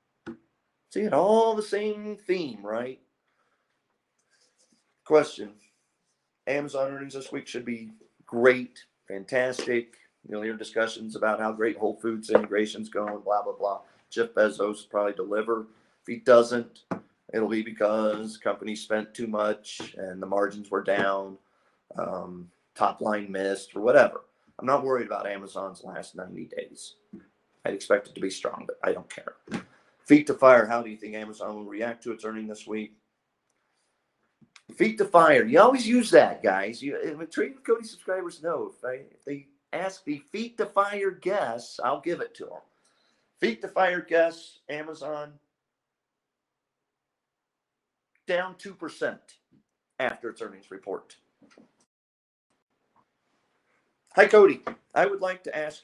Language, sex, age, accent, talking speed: English, male, 40-59, American, 145 wpm